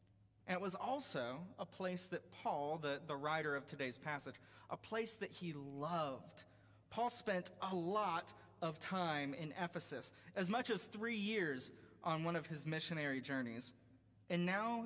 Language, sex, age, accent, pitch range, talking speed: English, male, 30-49, American, 130-180 Hz, 160 wpm